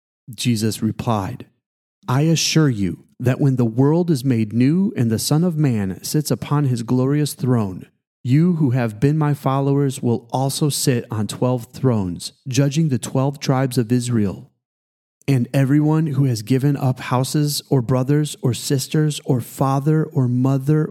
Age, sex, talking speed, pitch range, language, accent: 30-49, male, 160 wpm, 115-140 Hz, English, American